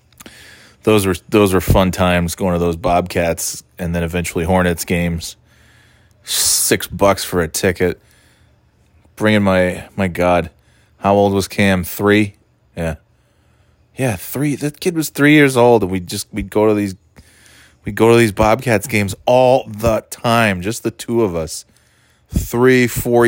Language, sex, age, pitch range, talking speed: English, male, 20-39, 90-110 Hz, 155 wpm